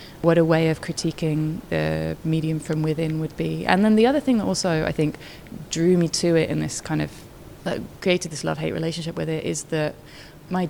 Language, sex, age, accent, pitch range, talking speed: English, female, 20-39, British, 150-165 Hz, 215 wpm